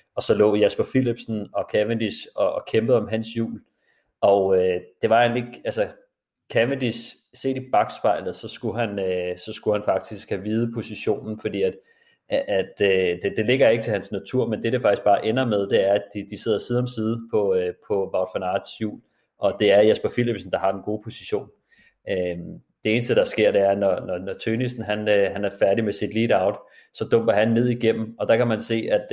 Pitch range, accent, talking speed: 100-120 Hz, native, 215 wpm